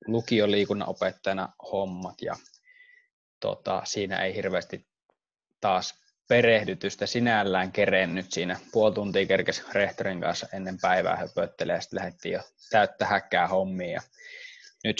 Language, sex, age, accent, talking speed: Finnish, male, 20-39, native, 110 wpm